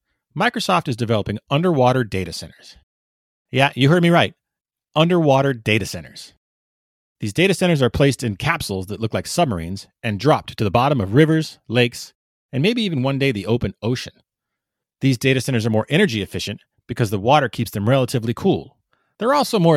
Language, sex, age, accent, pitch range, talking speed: English, male, 30-49, American, 105-145 Hz, 175 wpm